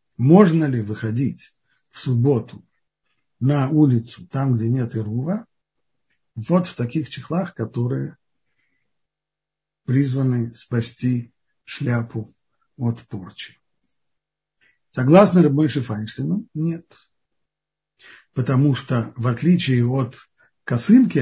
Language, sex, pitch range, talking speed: Russian, male, 120-165 Hz, 90 wpm